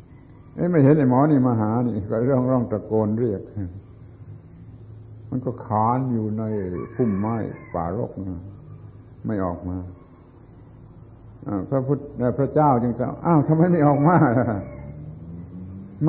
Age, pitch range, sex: 60-79, 100-125 Hz, male